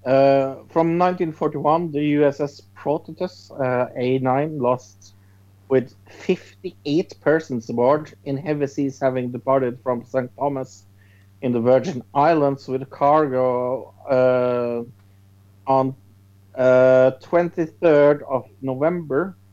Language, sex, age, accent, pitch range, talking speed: English, male, 50-69, Norwegian, 100-140 Hz, 100 wpm